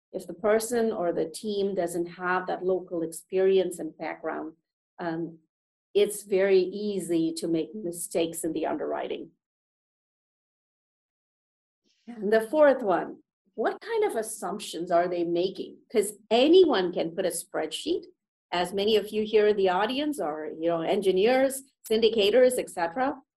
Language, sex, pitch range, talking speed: English, female, 180-300 Hz, 140 wpm